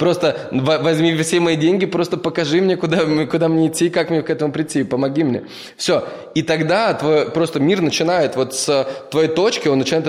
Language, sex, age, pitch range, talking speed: Russian, male, 20-39, 150-175 Hz, 190 wpm